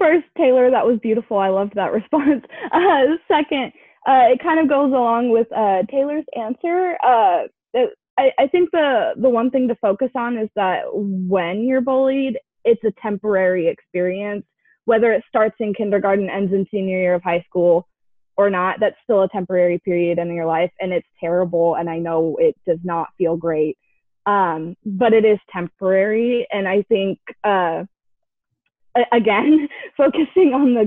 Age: 20-39